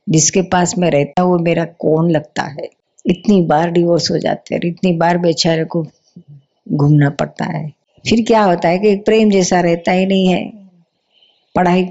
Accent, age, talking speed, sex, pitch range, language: native, 50-69, 180 wpm, female, 160-185 Hz, Hindi